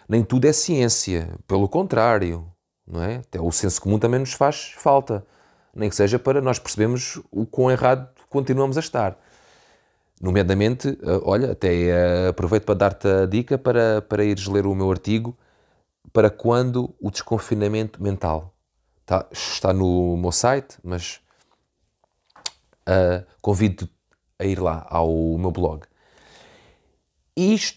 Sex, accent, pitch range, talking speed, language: male, Portuguese, 95-125 Hz, 135 wpm, Portuguese